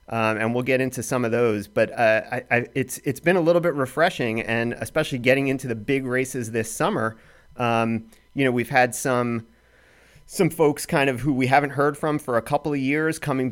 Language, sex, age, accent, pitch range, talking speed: English, male, 30-49, American, 110-135 Hz, 220 wpm